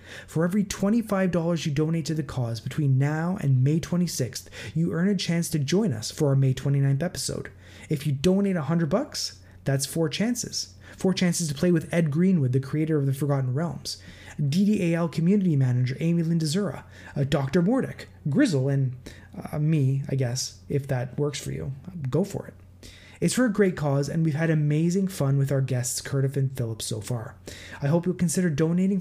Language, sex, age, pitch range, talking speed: English, male, 20-39, 130-170 Hz, 185 wpm